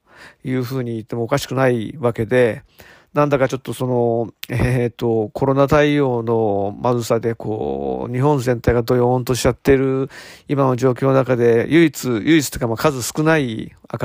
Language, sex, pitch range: Japanese, male, 115-135 Hz